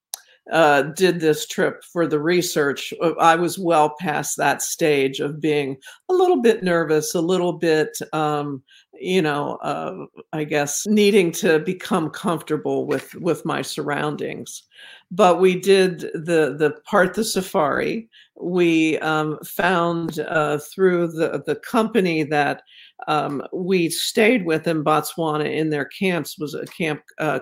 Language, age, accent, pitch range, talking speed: English, 50-69, American, 150-180 Hz, 145 wpm